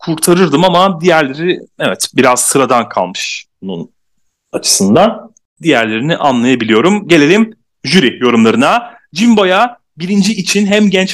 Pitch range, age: 145-220 Hz, 40-59